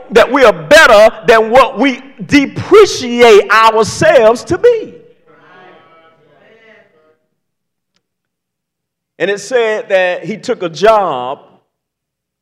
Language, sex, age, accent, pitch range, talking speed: English, male, 50-69, American, 160-225 Hz, 90 wpm